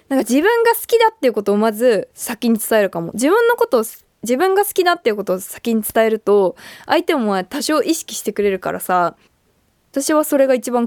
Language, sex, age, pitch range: Japanese, female, 20-39, 210-345 Hz